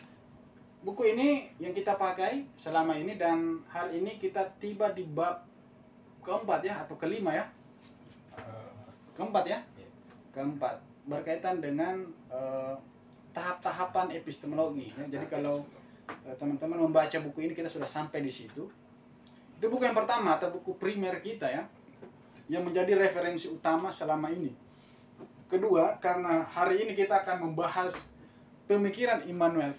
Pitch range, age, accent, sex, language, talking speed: 135-180 Hz, 20-39, native, male, Indonesian, 125 wpm